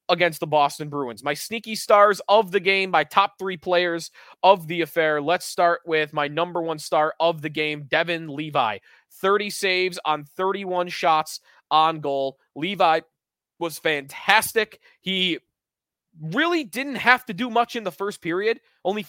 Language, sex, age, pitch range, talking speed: English, male, 20-39, 155-195 Hz, 160 wpm